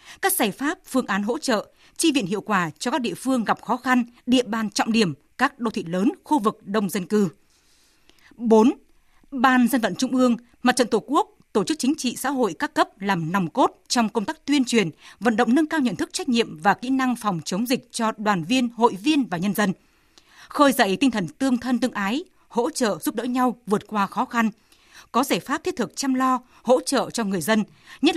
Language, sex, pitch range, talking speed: Vietnamese, female, 210-275 Hz, 230 wpm